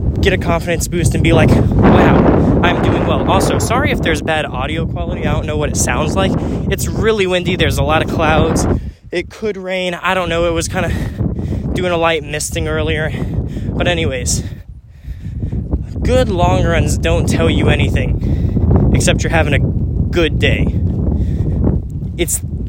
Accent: American